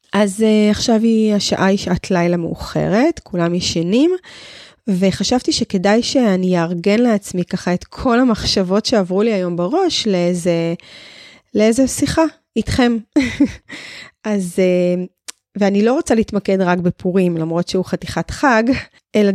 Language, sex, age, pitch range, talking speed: Hebrew, female, 20-39, 180-240 Hz, 125 wpm